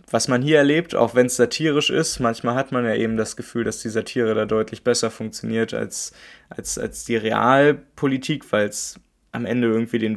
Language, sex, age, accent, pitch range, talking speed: German, male, 20-39, German, 105-125 Hz, 200 wpm